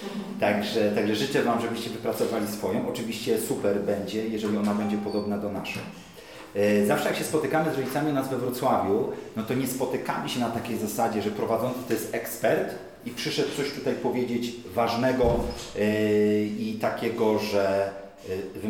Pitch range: 105-125 Hz